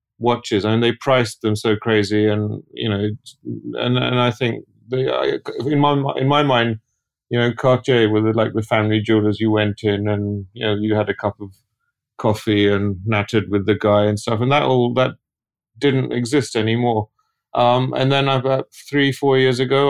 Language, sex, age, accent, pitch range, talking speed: English, male, 30-49, British, 110-125 Hz, 185 wpm